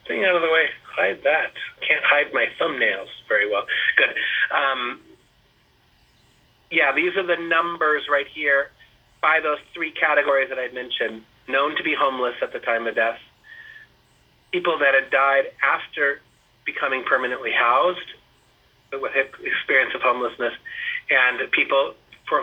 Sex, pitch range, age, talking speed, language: male, 135-190 Hz, 30-49, 140 wpm, English